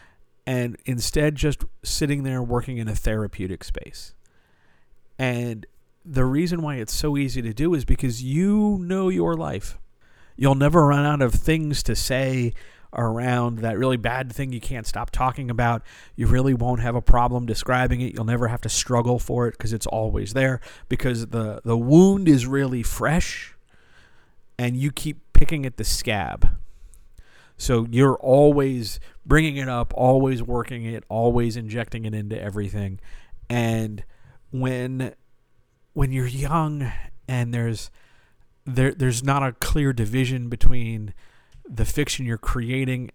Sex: male